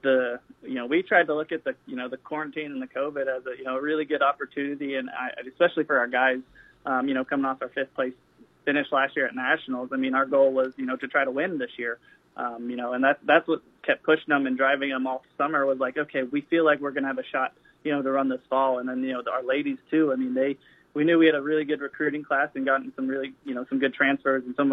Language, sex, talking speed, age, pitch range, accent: English, male, 285 wpm, 20-39, 130-150 Hz, American